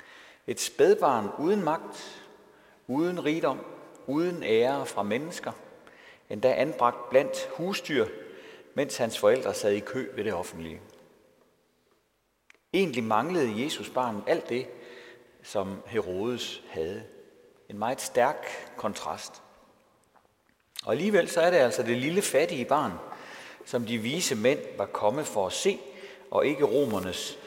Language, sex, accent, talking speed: Danish, male, native, 125 wpm